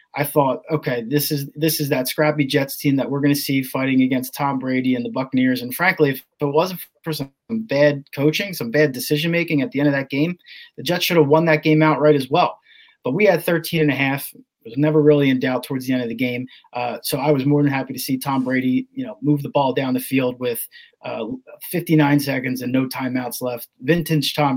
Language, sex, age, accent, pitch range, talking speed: English, male, 30-49, American, 130-155 Hz, 235 wpm